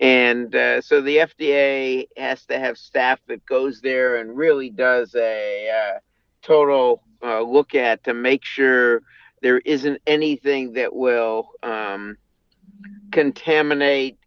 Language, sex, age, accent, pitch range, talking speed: English, male, 50-69, American, 120-160 Hz, 130 wpm